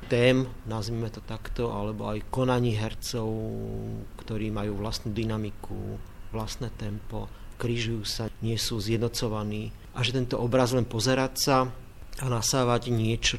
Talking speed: 130 wpm